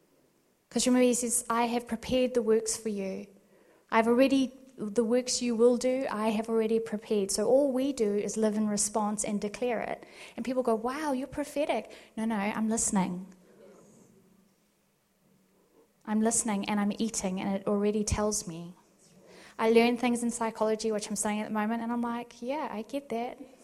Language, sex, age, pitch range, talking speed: English, female, 10-29, 205-240 Hz, 180 wpm